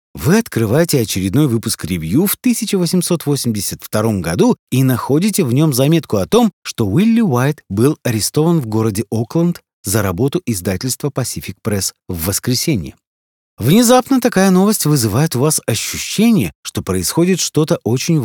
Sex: male